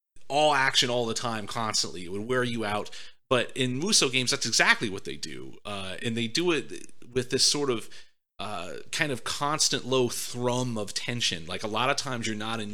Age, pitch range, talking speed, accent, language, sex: 30-49, 105-130 Hz, 210 wpm, American, English, male